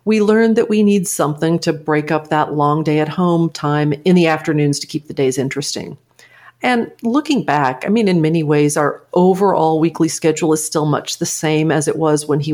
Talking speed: 215 wpm